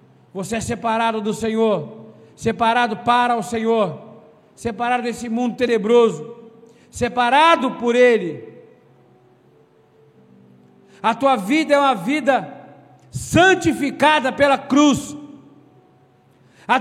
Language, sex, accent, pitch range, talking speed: Portuguese, male, Brazilian, 220-295 Hz, 95 wpm